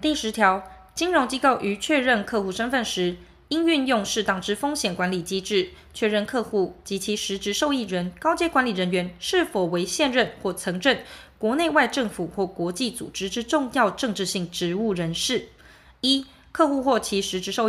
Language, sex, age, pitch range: Chinese, female, 20-39, 185-255 Hz